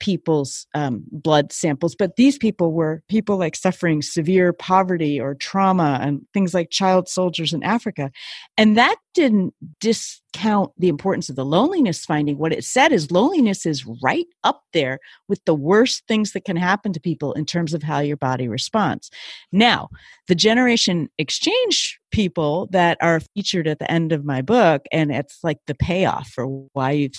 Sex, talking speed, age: female, 175 wpm, 40-59